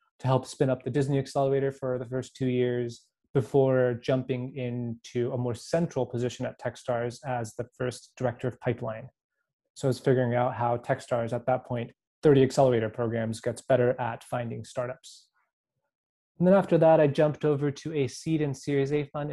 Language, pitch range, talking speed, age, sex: English, 125-145 Hz, 185 wpm, 20-39, male